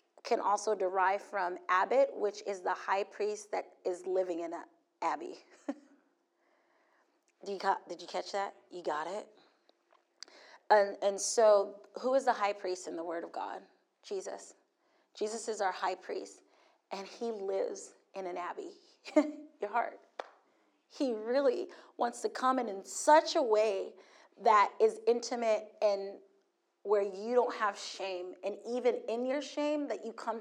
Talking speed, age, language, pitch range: 150 wpm, 30-49, English, 200-290 Hz